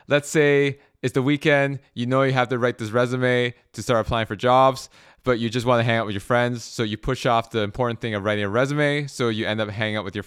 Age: 20-39